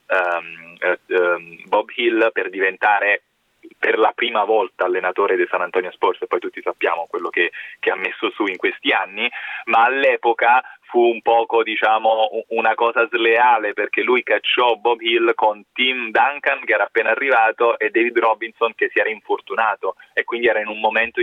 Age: 20-39